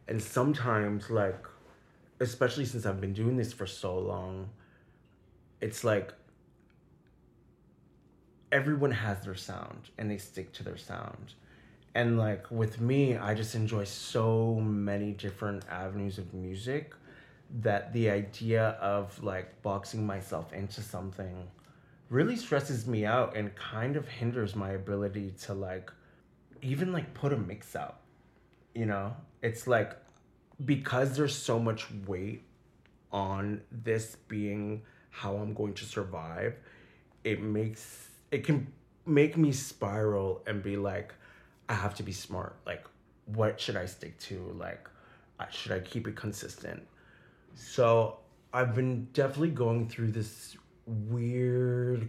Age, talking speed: 20-39, 135 wpm